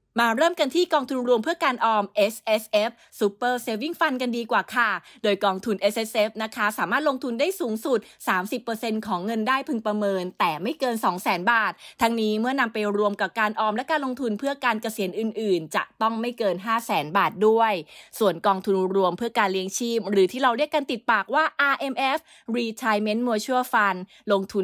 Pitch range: 200-245 Hz